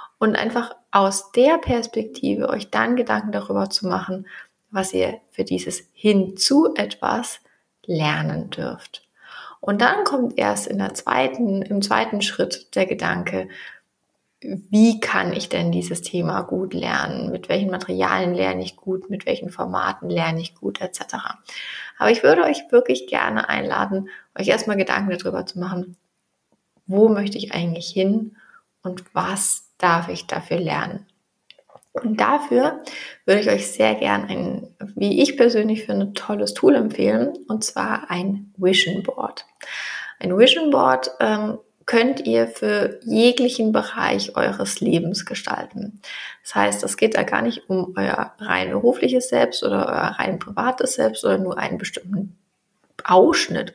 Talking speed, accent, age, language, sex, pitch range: 145 wpm, German, 30-49, German, female, 180-240 Hz